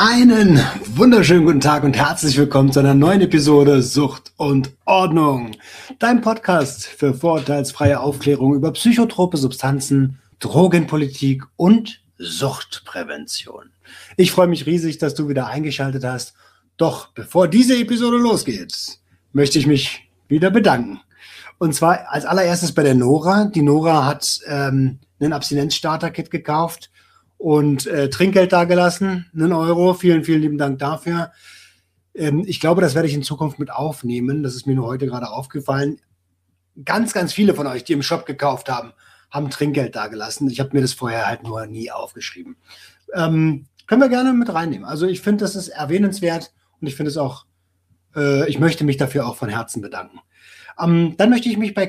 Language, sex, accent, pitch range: German, male, German, 135-175 Hz